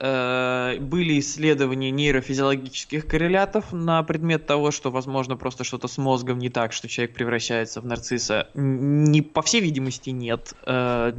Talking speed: 130 wpm